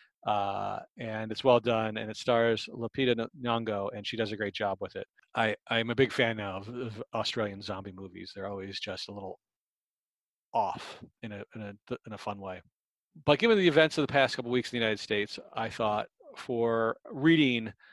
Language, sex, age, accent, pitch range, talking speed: English, male, 40-59, American, 110-125 Hz, 200 wpm